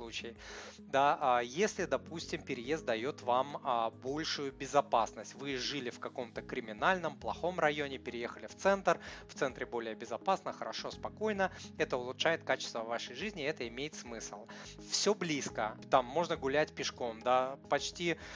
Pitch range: 120-160 Hz